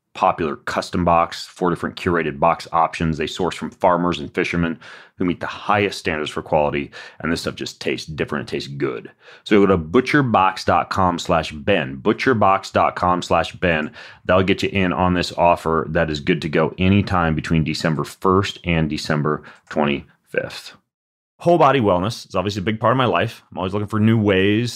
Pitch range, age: 90-105 Hz, 30-49